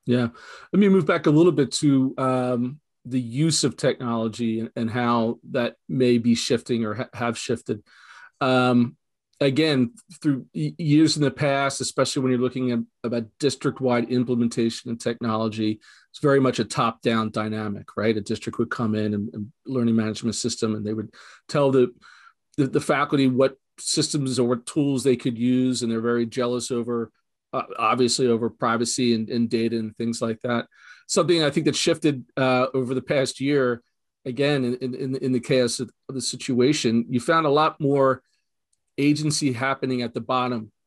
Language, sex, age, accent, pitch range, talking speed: English, male, 40-59, American, 115-135 Hz, 180 wpm